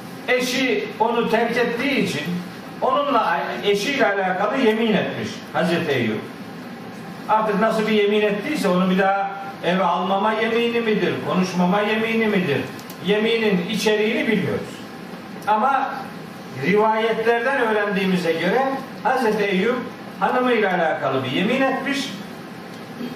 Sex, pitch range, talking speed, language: male, 200-240 Hz, 105 wpm, Turkish